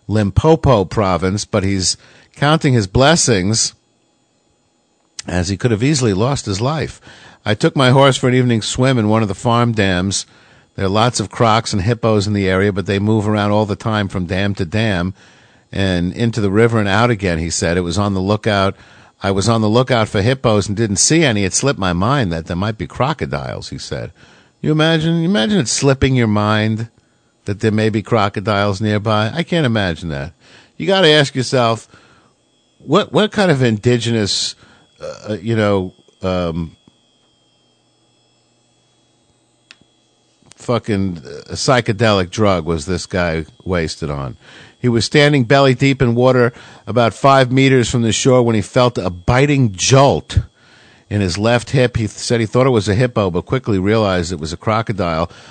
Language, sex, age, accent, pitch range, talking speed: English, male, 50-69, American, 100-125 Hz, 180 wpm